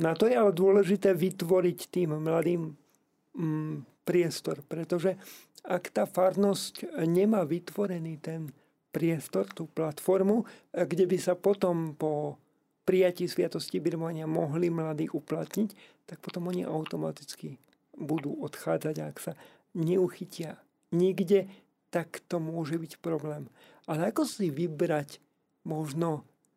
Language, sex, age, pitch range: Slovak, male, 50-69, 155-185 Hz